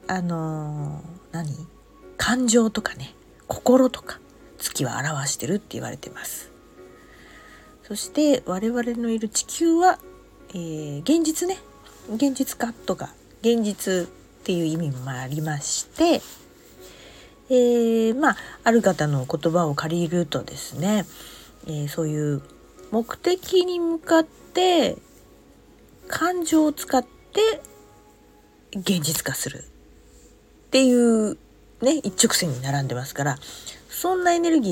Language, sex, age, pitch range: Japanese, female, 40-59, 150-240 Hz